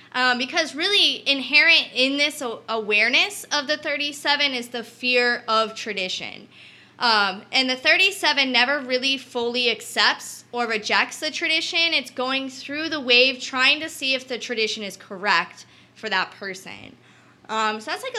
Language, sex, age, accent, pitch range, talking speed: English, female, 20-39, American, 225-285 Hz, 155 wpm